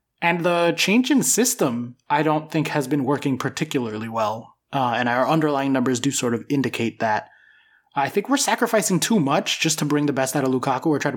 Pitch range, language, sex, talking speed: 130-160 Hz, English, male, 215 wpm